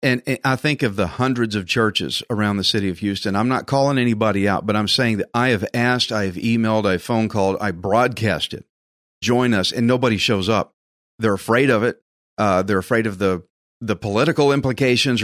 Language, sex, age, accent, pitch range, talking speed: English, male, 40-59, American, 110-140 Hz, 200 wpm